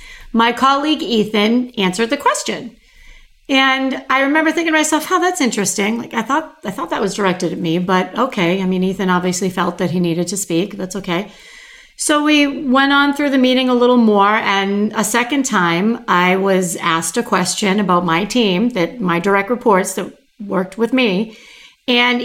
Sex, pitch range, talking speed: female, 190-255 Hz, 190 wpm